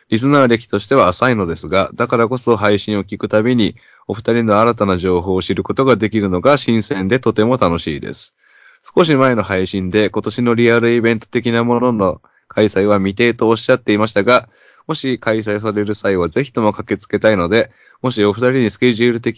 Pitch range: 100-125 Hz